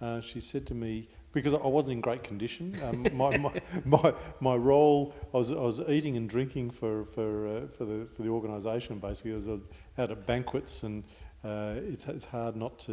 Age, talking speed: 50-69, 210 wpm